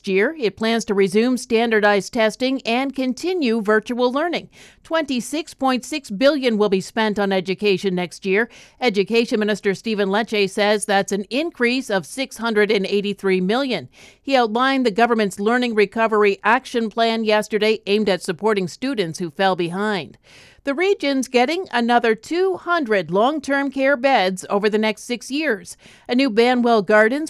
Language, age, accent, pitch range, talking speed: English, 50-69, American, 200-250 Hz, 140 wpm